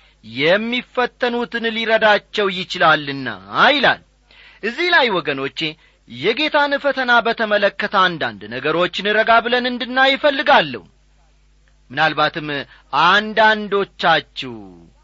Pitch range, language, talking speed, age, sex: 160-260 Hz, Amharic, 70 wpm, 40-59, male